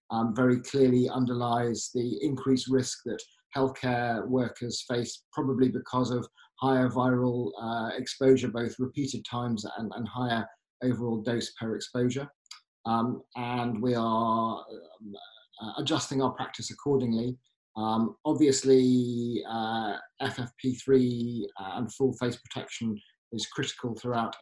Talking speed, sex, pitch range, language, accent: 120 wpm, male, 115-130 Hz, English, British